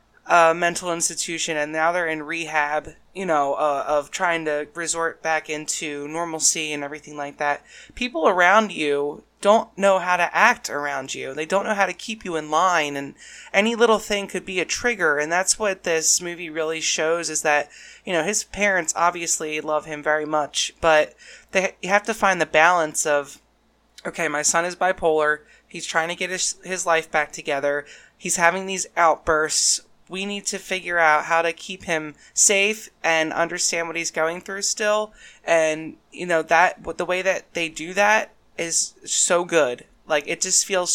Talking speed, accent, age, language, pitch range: 185 wpm, American, 20-39, English, 155-180 Hz